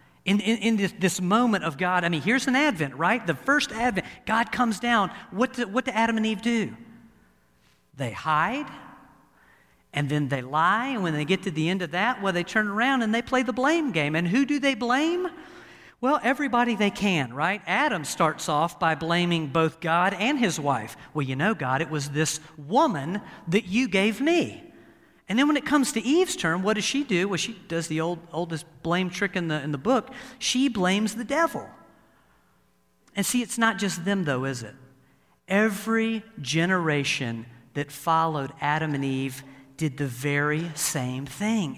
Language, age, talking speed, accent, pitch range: English, 50-69, 195 wpm, American, 155-235 Hz